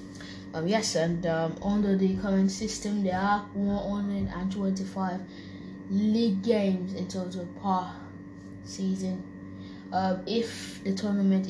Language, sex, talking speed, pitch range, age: English, female, 110 wpm, 175-200 Hz, 20-39